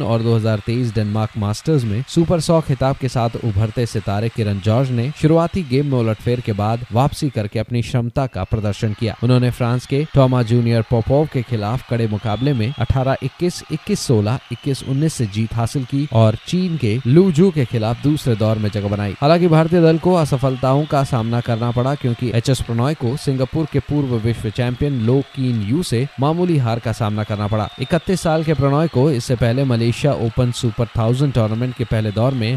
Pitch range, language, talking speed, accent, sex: 115-145 Hz, Hindi, 185 wpm, native, male